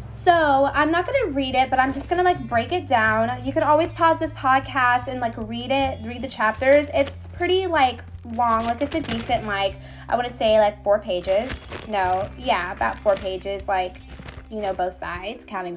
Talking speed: 215 wpm